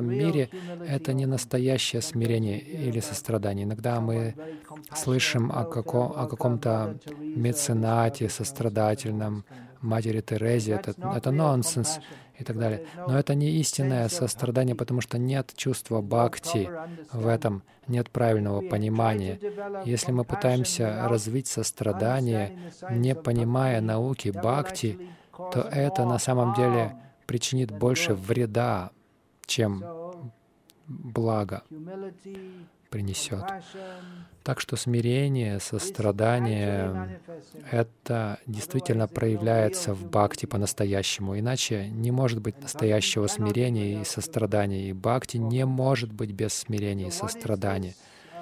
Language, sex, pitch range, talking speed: Russian, male, 110-135 Hz, 105 wpm